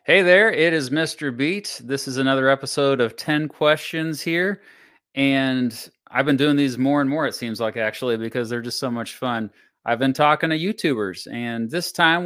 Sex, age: male, 30-49